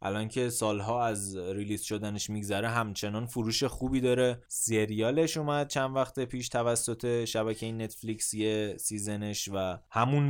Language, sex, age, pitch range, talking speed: Persian, male, 20-39, 105-130 Hz, 135 wpm